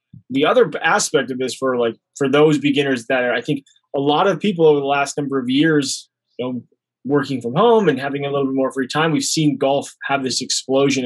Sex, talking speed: male, 235 wpm